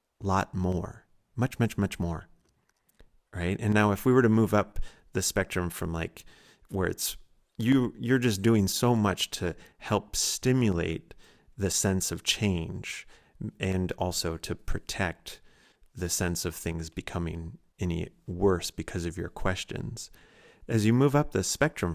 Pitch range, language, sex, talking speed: 90-120 Hz, English, male, 150 wpm